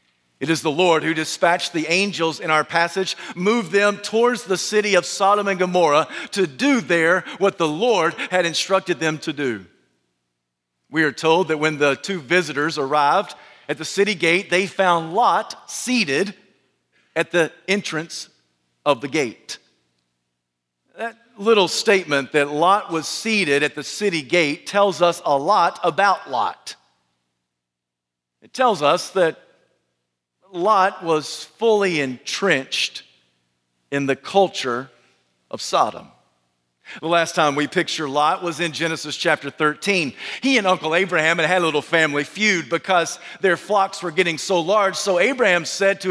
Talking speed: 150 wpm